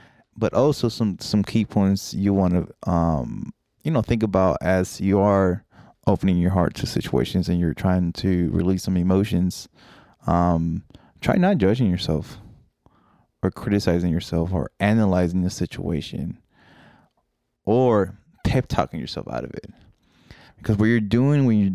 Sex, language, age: male, English, 20-39